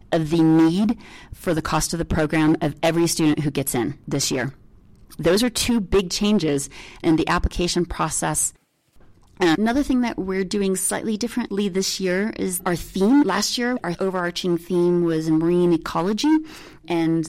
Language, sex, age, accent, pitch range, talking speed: English, female, 30-49, American, 155-185 Hz, 165 wpm